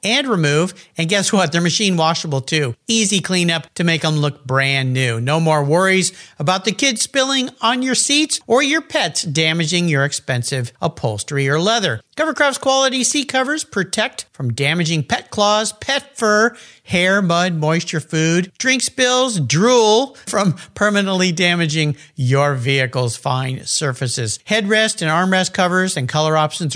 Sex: male